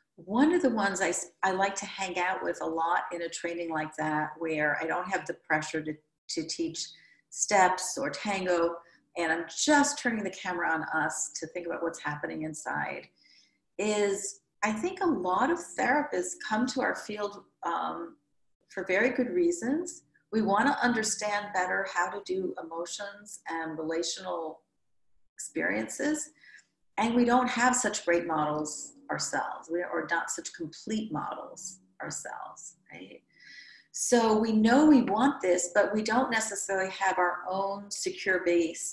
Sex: female